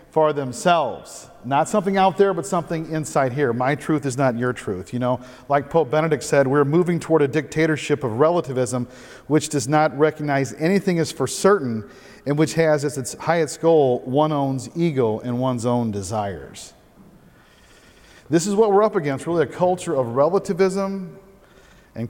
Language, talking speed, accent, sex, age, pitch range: English, 170 wpm, American, male, 40-59, 140-185 Hz